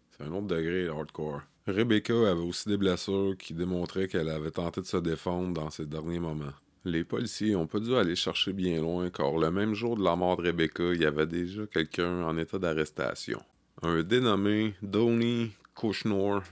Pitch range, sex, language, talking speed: 80-105 Hz, male, French, 190 wpm